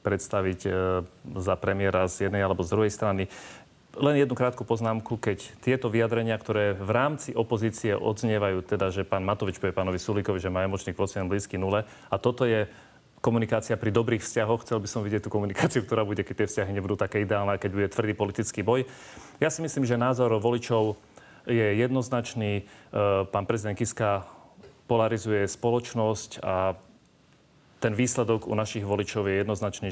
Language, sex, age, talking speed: Slovak, male, 30-49, 160 wpm